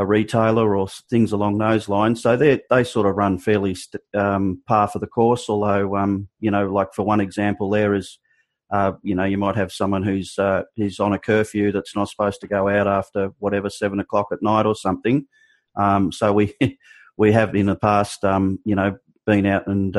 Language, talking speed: English, 215 wpm